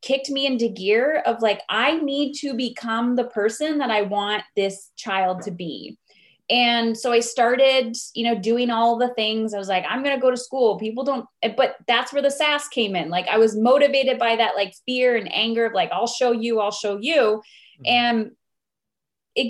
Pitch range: 200-240 Hz